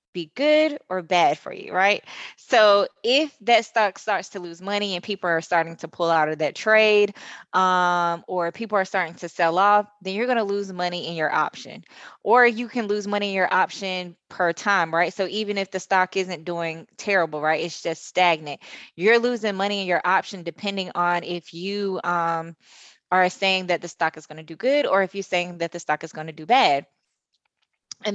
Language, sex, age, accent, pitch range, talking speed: English, female, 20-39, American, 170-205 Hz, 210 wpm